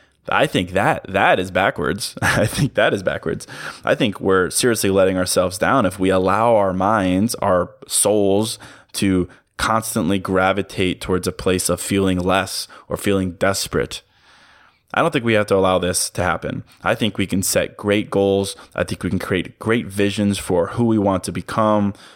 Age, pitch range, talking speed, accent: 20-39, 95-105 Hz, 180 wpm, American